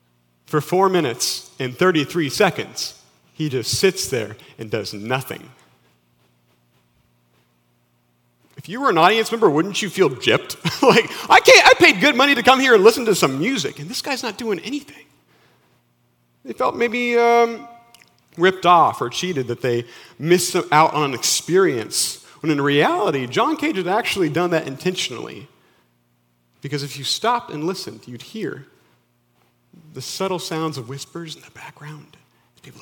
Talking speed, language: 155 wpm, English